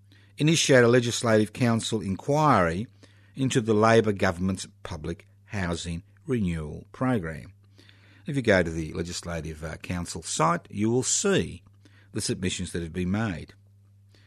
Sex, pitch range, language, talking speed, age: male, 90-110 Hz, English, 125 wpm, 50-69